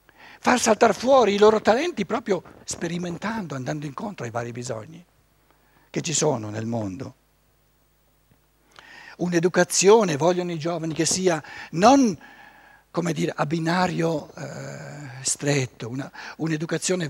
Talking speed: 110 wpm